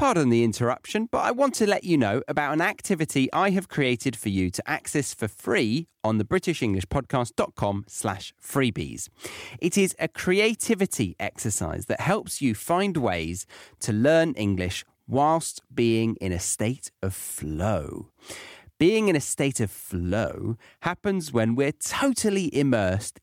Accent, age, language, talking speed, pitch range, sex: British, 30-49, English, 150 wpm, 105-160 Hz, male